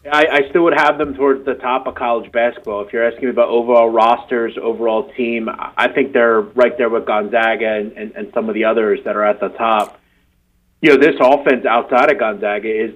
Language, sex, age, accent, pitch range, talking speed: English, male, 30-49, American, 115-135 Hz, 220 wpm